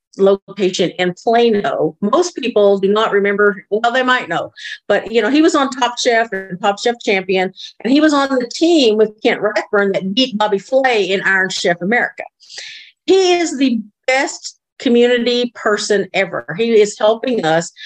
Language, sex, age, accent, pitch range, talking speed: English, female, 50-69, American, 200-250 Hz, 175 wpm